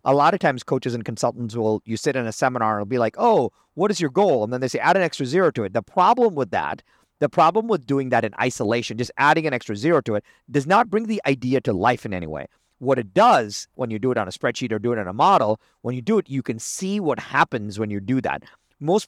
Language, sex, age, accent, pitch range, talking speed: English, male, 40-59, American, 120-180 Hz, 280 wpm